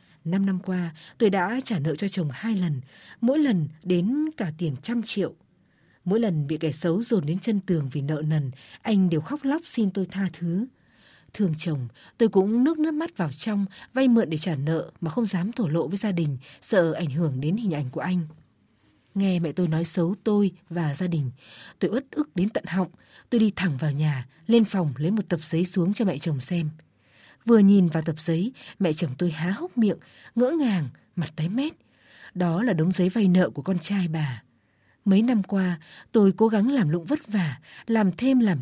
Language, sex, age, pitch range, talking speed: Vietnamese, female, 20-39, 160-215 Hz, 215 wpm